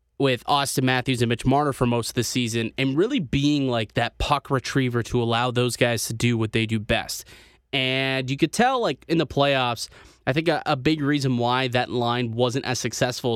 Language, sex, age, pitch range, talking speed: English, male, 20-39, 120-150 Hz, 215 wpm